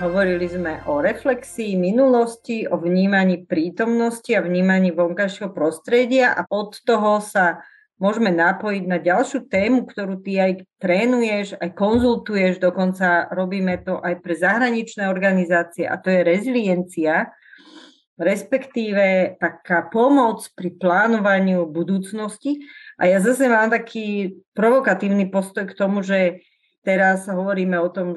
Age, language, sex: 40-59, Slovak, female